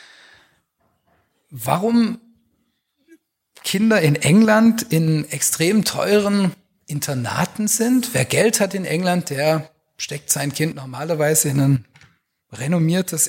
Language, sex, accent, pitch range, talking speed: German, male, German, 135-200 Hz, 100 wpm